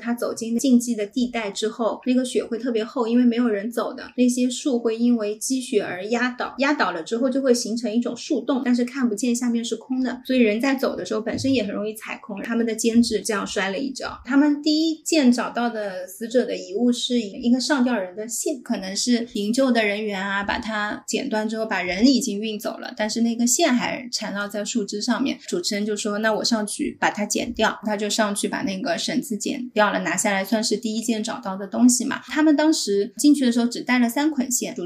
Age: 20-39